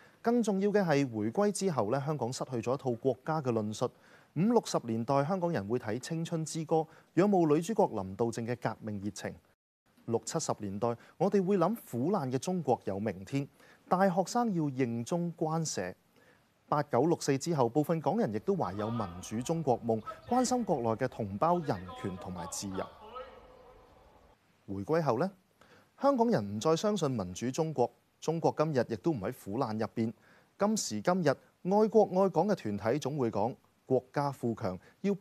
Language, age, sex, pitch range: Chinese, 30-49, male, 115-180 Hz